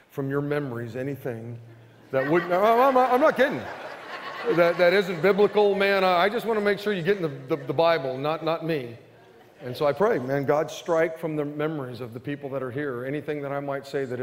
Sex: male